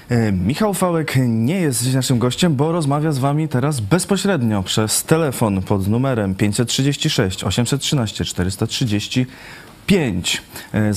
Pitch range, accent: 95-120 Hz, native